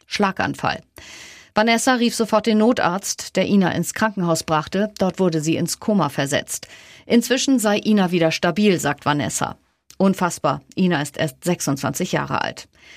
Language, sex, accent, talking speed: German, female, German, 145 wpm